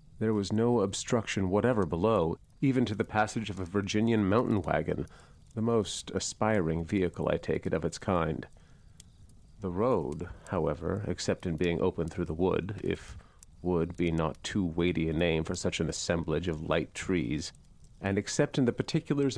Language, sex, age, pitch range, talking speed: English, male, 40-59, 85-115 Hz, 170 wpm